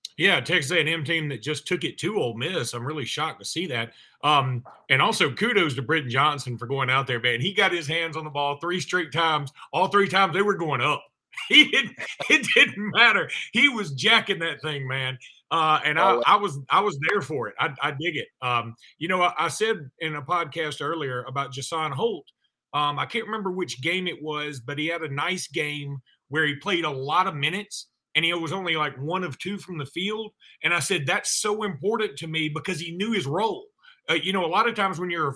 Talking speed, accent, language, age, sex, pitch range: 235 wpm, American, English, 30-49, male, 150-200 Hz